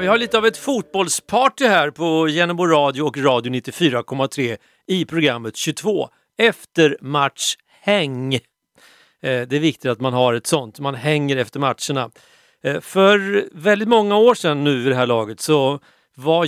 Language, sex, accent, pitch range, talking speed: Swedish, male, native, 130-190 Hz, 155 wpm